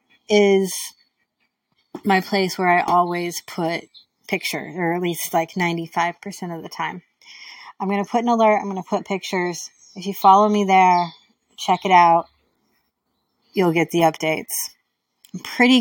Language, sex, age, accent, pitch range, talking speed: English, female, 30-49, American, 175-220 Hz, 155 wpm